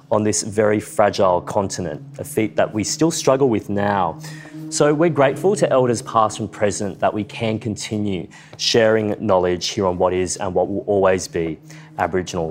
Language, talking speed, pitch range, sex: English, 180 wpm, 100-135 Hz, male